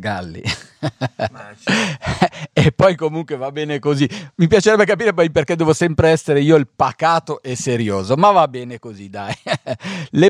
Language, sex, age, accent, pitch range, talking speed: Italian, male, 40-59, native, 115-160 Hz, 145 wpm